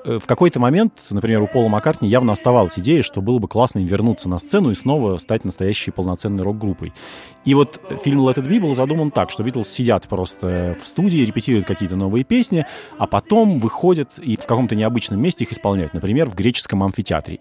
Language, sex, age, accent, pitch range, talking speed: Russian, male, 30-49, native, 100-140 Hz, 190 wpm